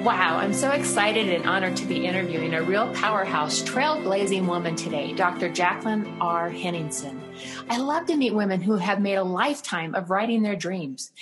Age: 30-49